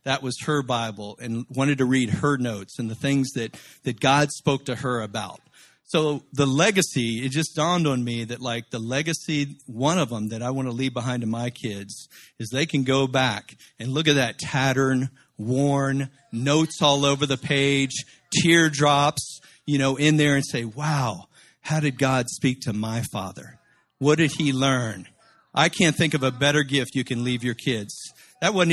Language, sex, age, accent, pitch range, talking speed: English, male, 50-69, American, 125-150 Hz, 195 wpm